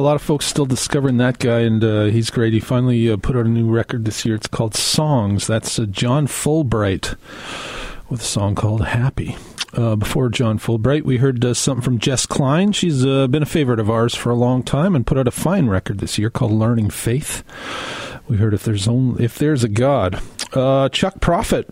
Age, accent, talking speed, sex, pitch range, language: 40-59, American, 220 wpm, male, 105-130 Hz, English